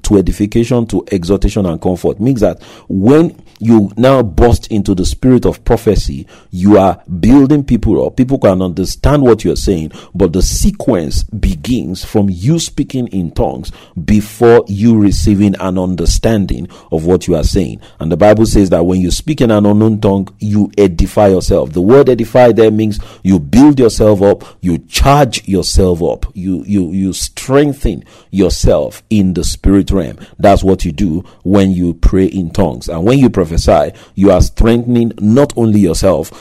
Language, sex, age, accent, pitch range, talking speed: English, male, 40-59, Nigerian, 95-120 Hz, 170 wpm